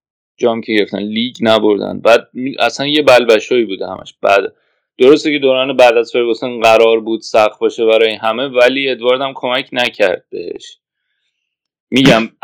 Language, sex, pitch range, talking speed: Persian, male, 110-160 Hz, 145 wpm